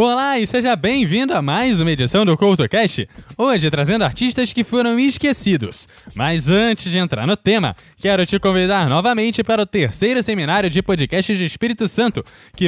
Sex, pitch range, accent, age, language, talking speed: male, 155-225 Hz, Brazilian, 10-29, Portuguese, 170 wpm